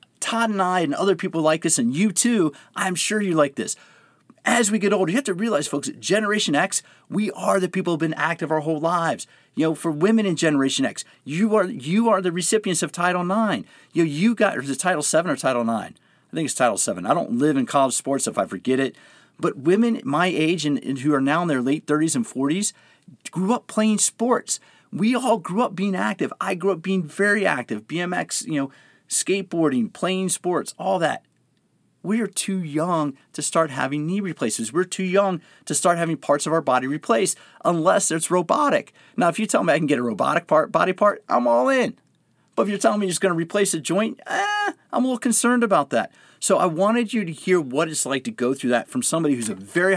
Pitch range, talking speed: 155-210 Hz, 235 wpm